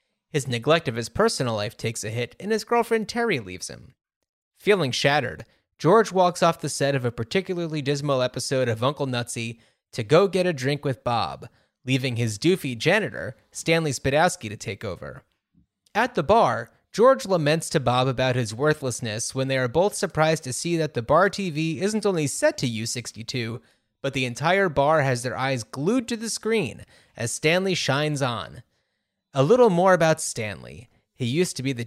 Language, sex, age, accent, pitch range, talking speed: English, male, 30-49, American, 125-180 Hz, 185 wpm